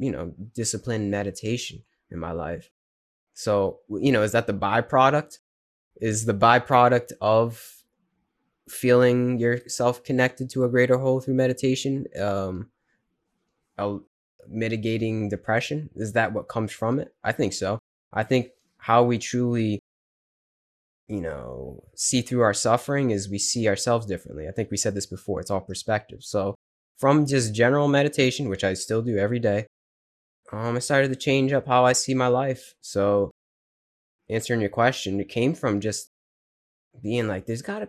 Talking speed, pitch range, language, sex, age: 155 wpm, 100-120 Hz, English, male, 10-29